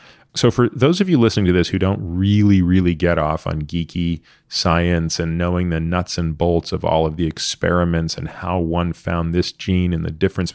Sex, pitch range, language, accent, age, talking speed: male, 80-95 Hz, English, American, 30-49, 210 wpm